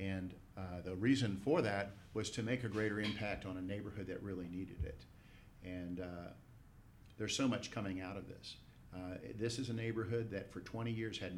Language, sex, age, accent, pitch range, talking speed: English, male, 50-69, American, 95-110 Hz, 200 wpm